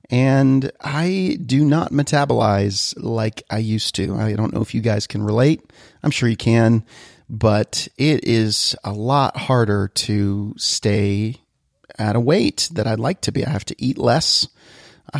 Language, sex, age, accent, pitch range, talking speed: English, male, 40-59, American, 110-135 Hz, 170 wpm